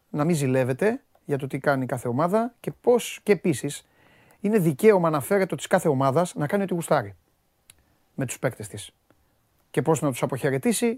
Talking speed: 180 wpm